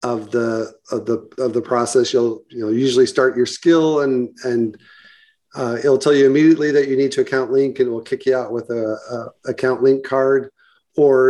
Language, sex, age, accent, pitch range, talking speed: English, male, 40-59, American, 120-160 Hz, 205 wpm